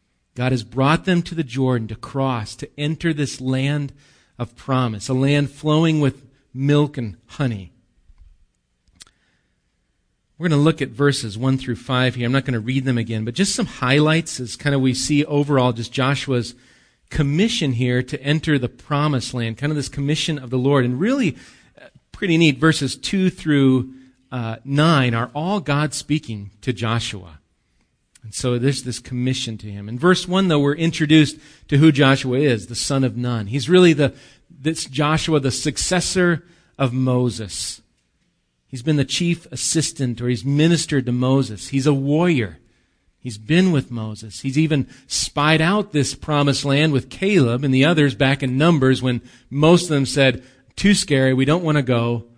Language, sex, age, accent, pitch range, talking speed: English, male, 40-59, American, 120-150 Hz, 175 wpm